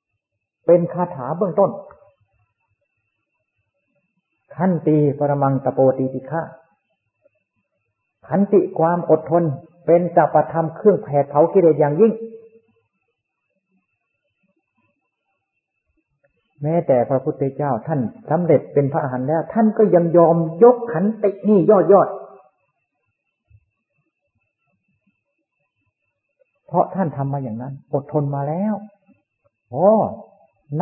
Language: Thai